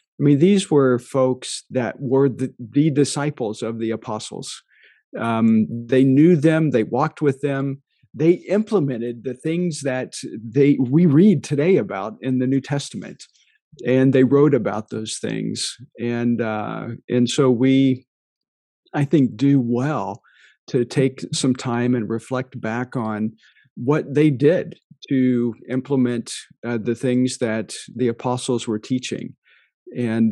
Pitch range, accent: 120-145 Hz, American